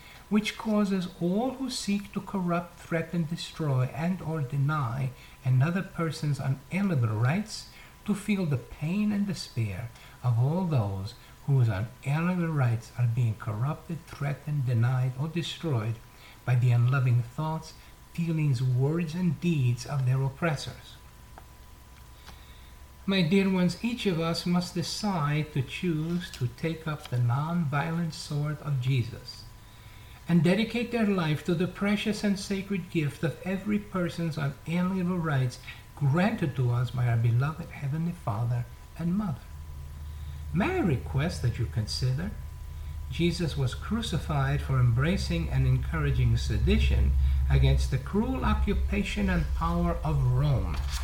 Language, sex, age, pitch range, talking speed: English, male, 60-79, 120-170 Hz, 130 wpm